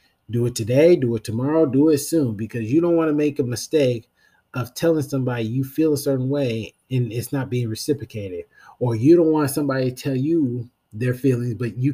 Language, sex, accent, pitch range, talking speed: English, male, American, 115-140 Hz, 210 wpm